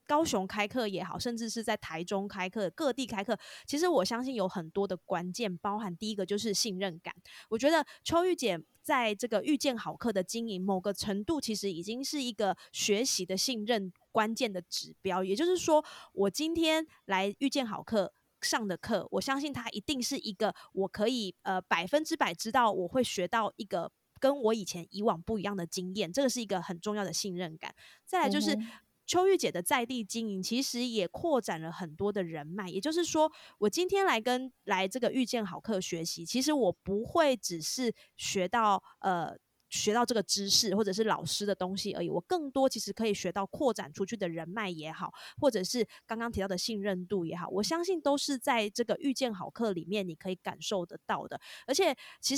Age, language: 20-39, Chinese